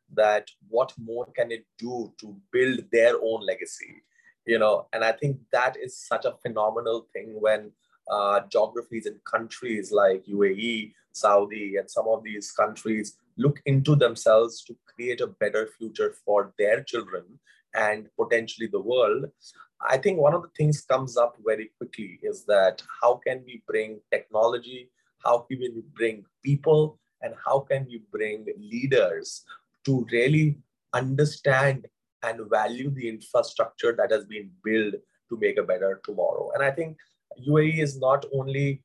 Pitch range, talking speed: 115-145 Hz, 155 wpm